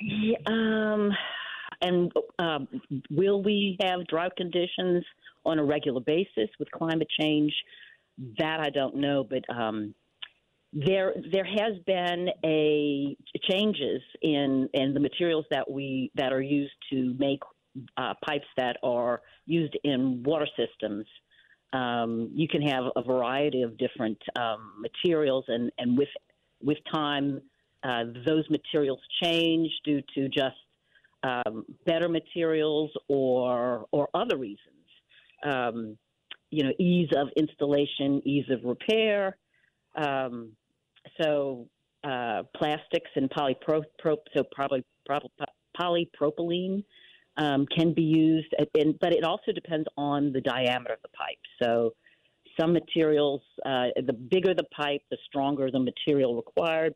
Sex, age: female, 50-69